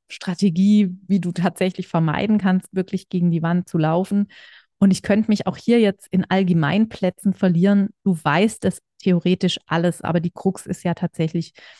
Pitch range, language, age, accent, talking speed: 175-205 Hz, German, 30-49, German, 170 wpm